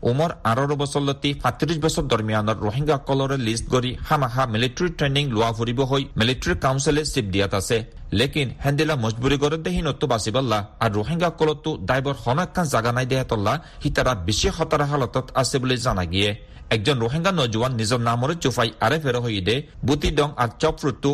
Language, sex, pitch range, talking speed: Bengali, male, 115-155 Hz, 135 wpm